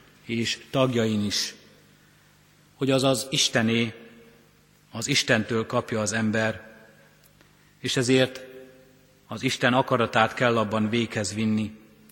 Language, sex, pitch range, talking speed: Hungarian, male, 110-135 Hz, 95 wpm